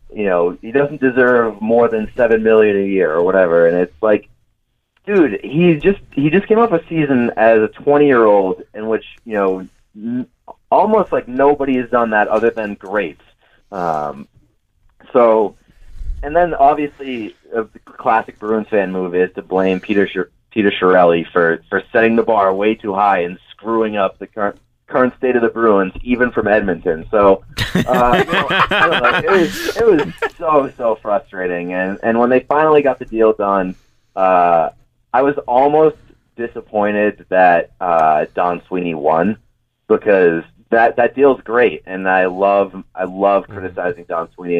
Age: 30-49